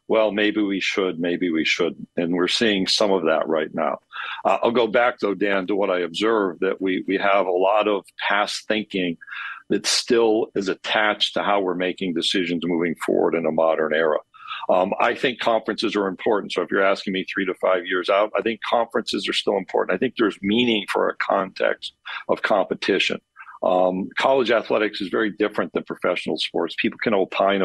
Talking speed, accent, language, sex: 200 wpm, American, English, male